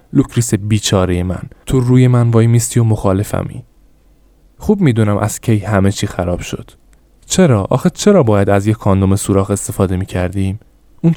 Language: Persian